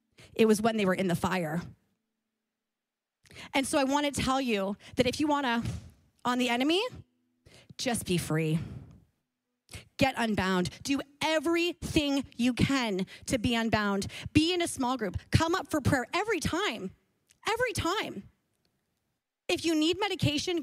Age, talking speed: 30-49, 150 wpm